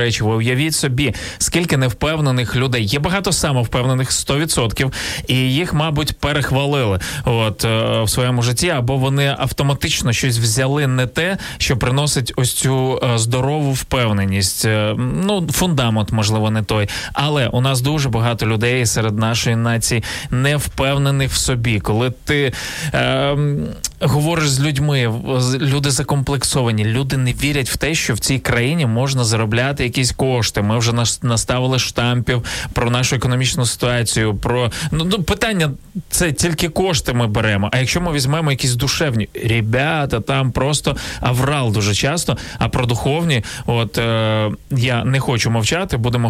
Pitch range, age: 115-140 Hz, 20-39